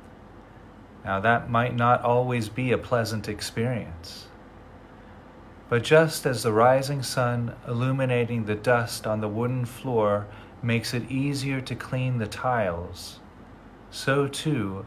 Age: 30-49